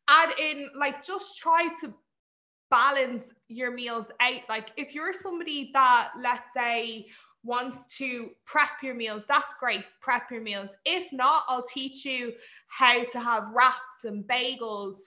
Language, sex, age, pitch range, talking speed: English, female, 20-39, 220-280 Hz, 150 wpm